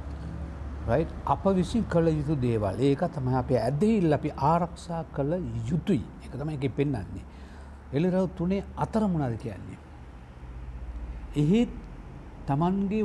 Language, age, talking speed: English, 60-79, 115 wpm